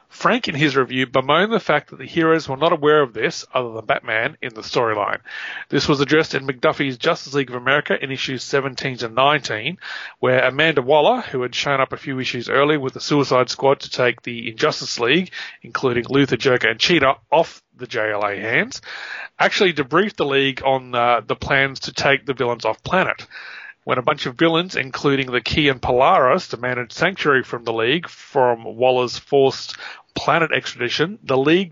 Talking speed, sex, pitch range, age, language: 185 wpm, male, 125-160 Hz, 30-49, English